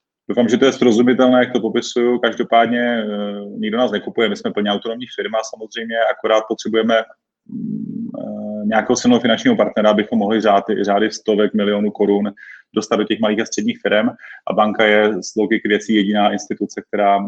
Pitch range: 105-120 Hz